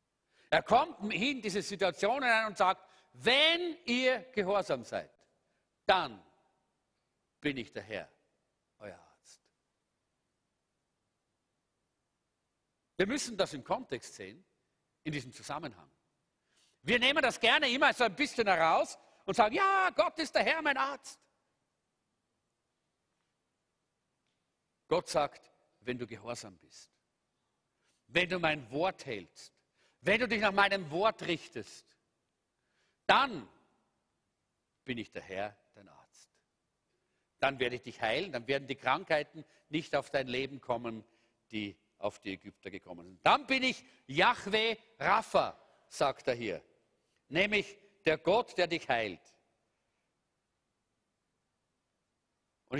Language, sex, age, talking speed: German, male, 50-69, 120 wpm